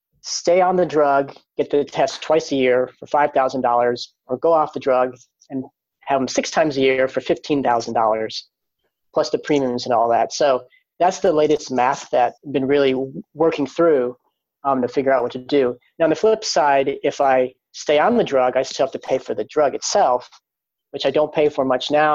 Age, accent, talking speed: 30-49, American, 210 wpm